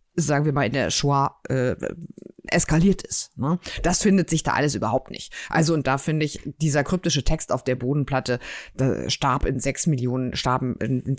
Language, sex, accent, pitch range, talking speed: German, female, German, 135-185 Hz, 170 wpm